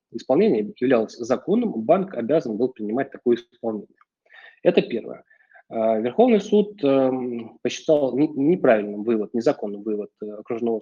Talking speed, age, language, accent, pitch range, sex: 105 wpm, 20-39, Russian, native, 115-155 Hz, male